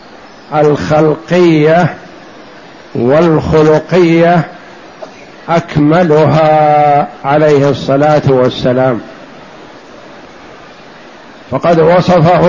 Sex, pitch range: male, 150-170 Hz